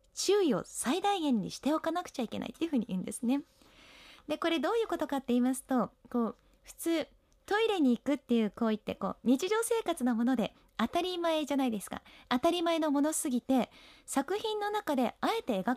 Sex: female